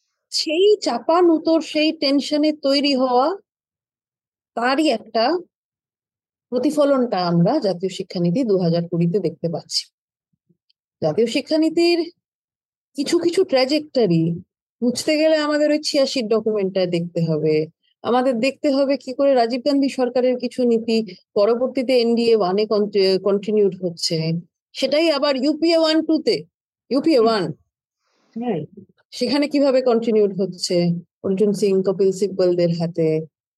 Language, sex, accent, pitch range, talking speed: Bengali, female, native, 190-285 Hz, 75 wpm